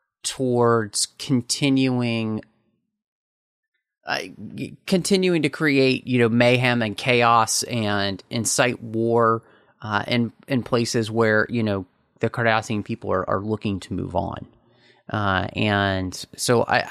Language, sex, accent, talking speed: English, male, American, 120 wpm